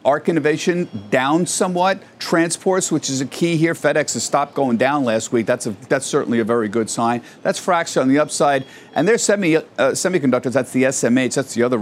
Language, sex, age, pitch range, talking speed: English, male, 50-69, 120-160 Hz, 210 wpm